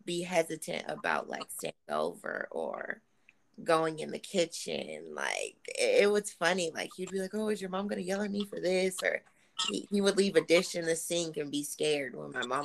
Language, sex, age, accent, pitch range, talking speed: English, female, 20-39, American, 155-200 Hz, 220 wpm